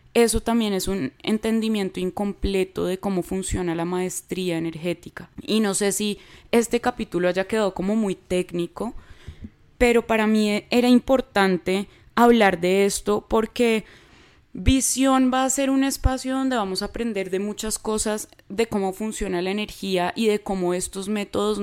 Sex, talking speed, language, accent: female, 155 wpm, Spanish, Colombian